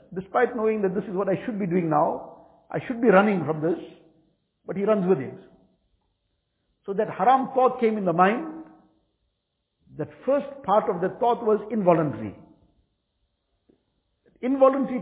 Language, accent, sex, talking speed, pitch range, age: English, Indian, male, 155 wpm, 165-210 Hz, 50-69